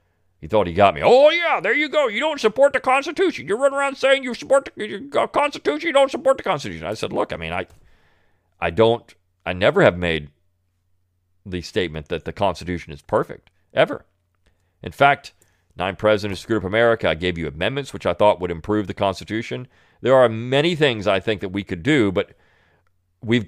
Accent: American